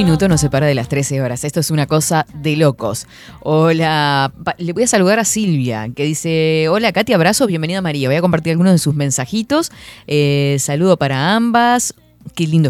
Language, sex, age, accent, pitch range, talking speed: Spanish, female, 20-39, Argentinian, 140-175 Hz, 205 wpm